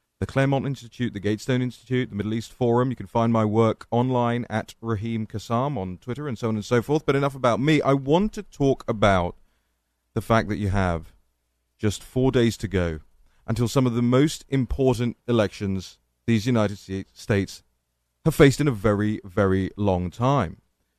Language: English